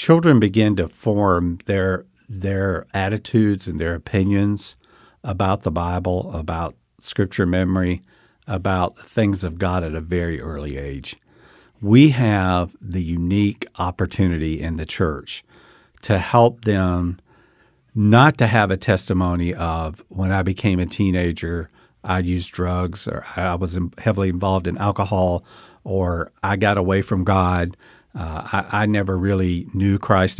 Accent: American